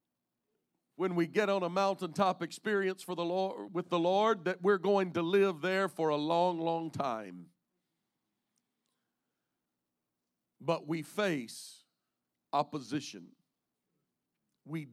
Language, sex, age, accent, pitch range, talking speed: English, male, 50-69, American, 150-205 Hz, 115 wpm